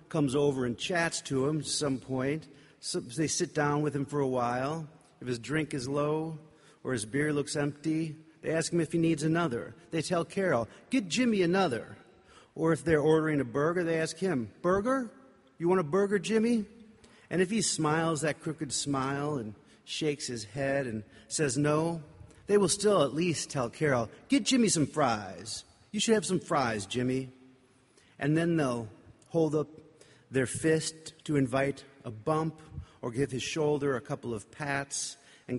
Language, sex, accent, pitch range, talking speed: English, male, American, 120-160 Hz, 180 wpm